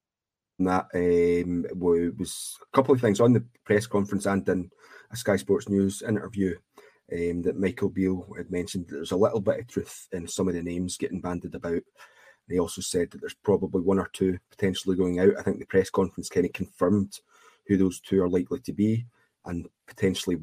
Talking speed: 195 wpm